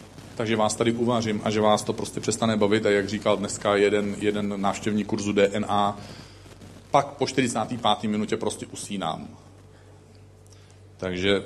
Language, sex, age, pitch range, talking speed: Czech, male, 40-59, 100-120 Hz, 140 wpm